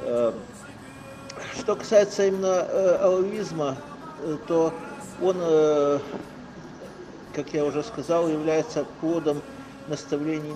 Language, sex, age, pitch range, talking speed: Ukrainian, male, 50-69, 140-160 Hz, 90 wpm